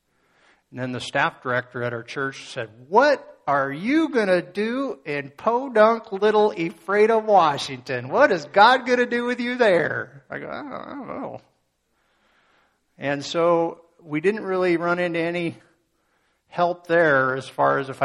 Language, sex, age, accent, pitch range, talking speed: English, male, 50-69, American, 125-165 Hz, 165 wpm